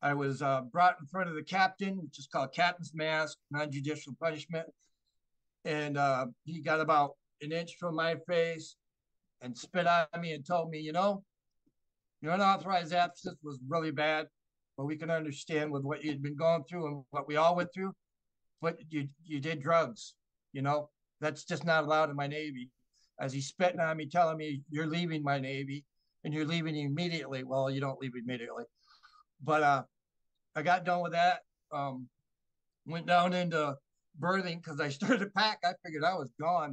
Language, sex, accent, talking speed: English, male, American, 185 wpm